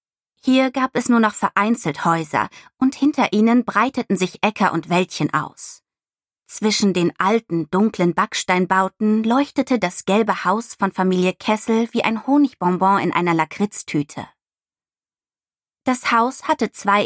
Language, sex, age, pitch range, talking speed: German, female, 20-39, 175-240 Hz, 135 wpm